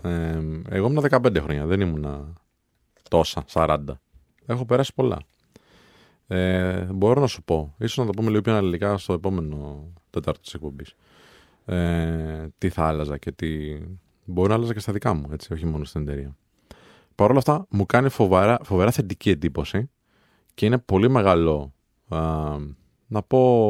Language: Greek